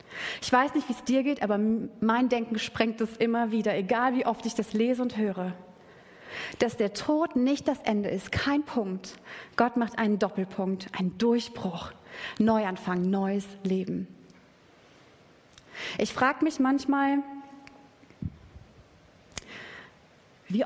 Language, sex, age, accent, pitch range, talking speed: German, female, 30-49, German, 210-255 Hz, 130 wpm